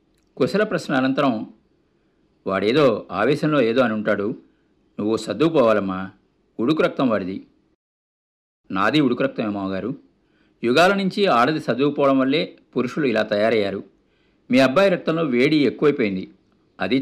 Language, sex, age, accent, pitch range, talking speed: Telugu, male, 50-69, native, 105-160 Hz, 105 wpm